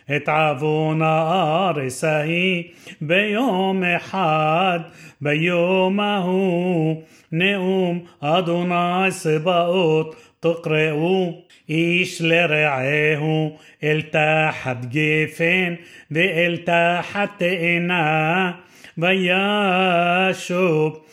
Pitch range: 155-180 Hz